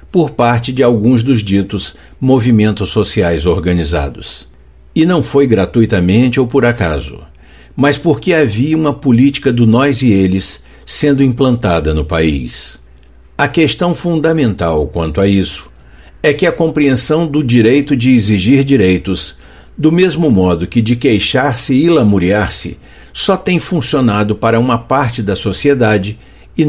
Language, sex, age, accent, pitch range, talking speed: Portuguese, male, 60-79, Brazilian, 85-135 Hz, 140 wpm